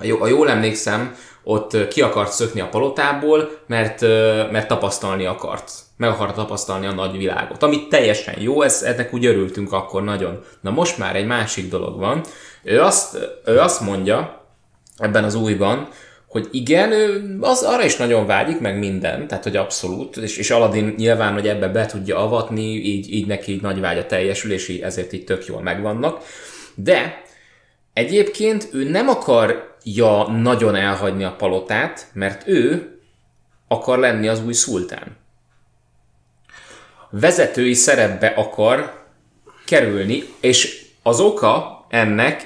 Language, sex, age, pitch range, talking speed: Hungarian, male, 20-39, 100-125 Hz, 145 wpm